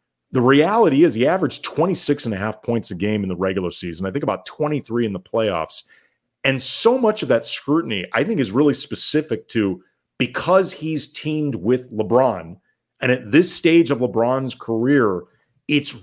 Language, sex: English, male